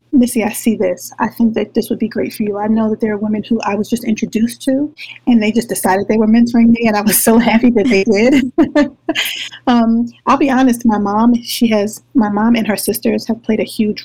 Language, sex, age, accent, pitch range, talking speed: English, female, 30-49, American, 210-240 Hz, 250 wpm